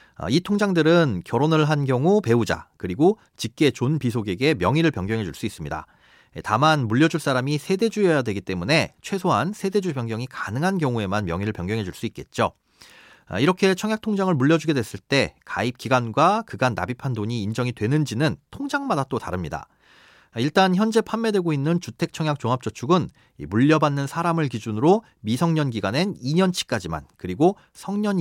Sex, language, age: male, Korean, 40-59